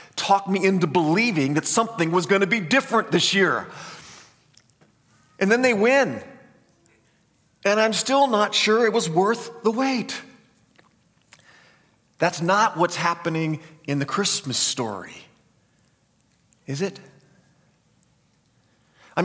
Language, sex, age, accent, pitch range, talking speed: English, male, 40-59, American, 135-195 Hz, 120 wpm